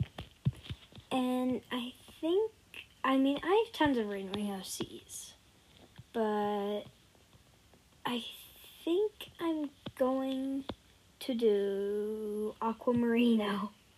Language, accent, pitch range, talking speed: English, American, 210-255 Hz, 75 wpm